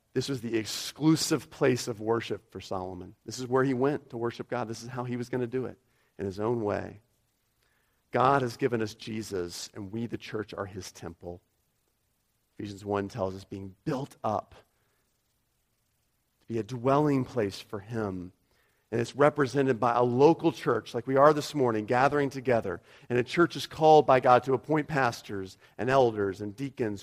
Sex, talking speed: male, 185 wpm